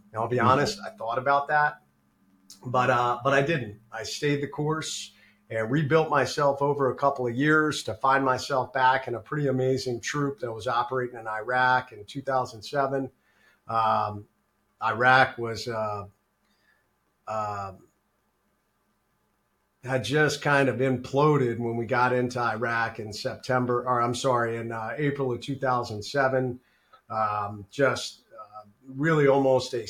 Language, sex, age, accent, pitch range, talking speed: English, male, 40-59, American, 120-135 Hz, 140 wpm